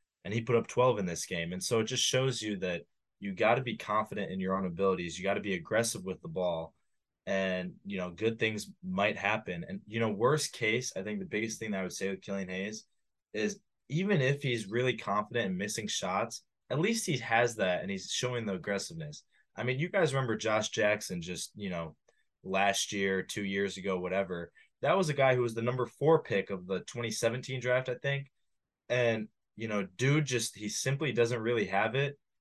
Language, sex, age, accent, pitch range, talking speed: English, male, 20-39, American, 95-125 Hz, 220 wpm